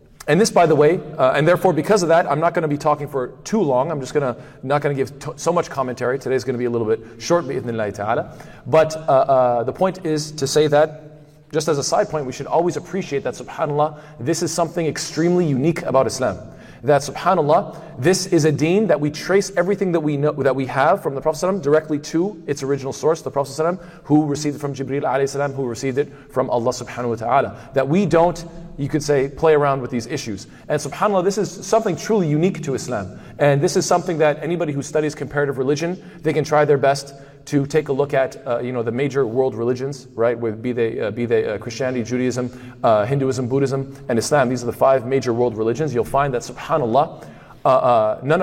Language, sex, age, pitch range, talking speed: English, male, 40-59, 125-155 Hz, 220 wpm